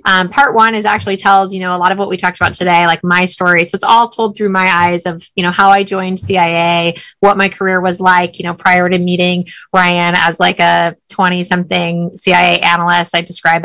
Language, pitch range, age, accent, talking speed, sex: English, 180-200 Hz, 20-39, American, 235 wpm, female